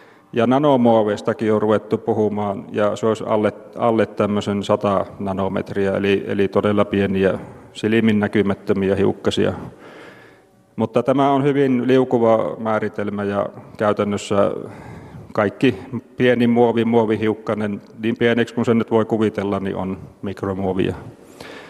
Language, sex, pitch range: Finnish, male, 105-120 Hz